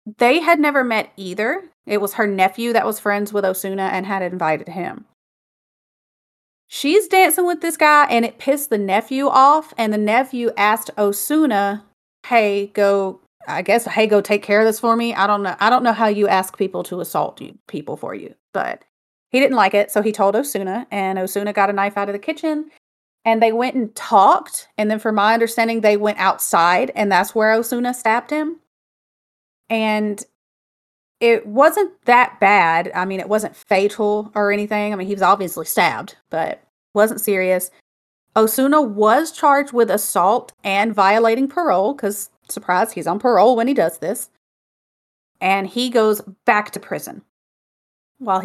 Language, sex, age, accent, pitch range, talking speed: English, female, 30-49, American, 200-250 Hz, 175 wpm